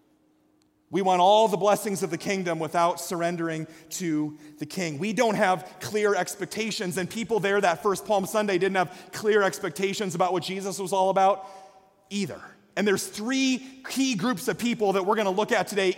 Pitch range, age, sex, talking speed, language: 175-210 Hz, 30-49, male, 190 wpm, English